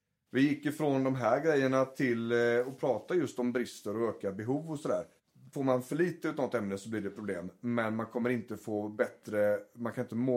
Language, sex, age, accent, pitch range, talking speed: Swedish, male, 30-49, native, 105-125 Hz, 225 wpm